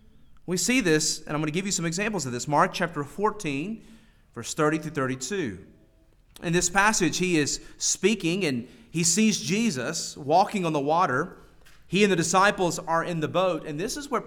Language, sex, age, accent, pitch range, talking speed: English, male, 30-49, American, 145-210 Hz, 195 wpm